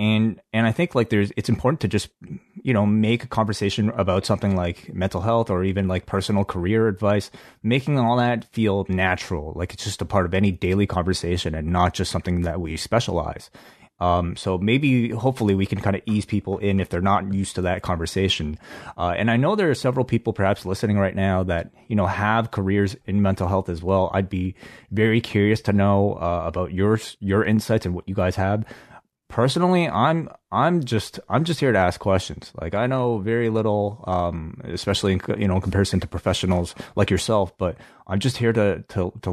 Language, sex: English, male